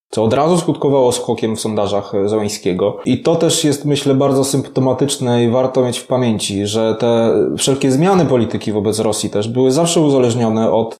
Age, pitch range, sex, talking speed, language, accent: 20-39, 115-145 Hz, male, 175 wpm, Polish, native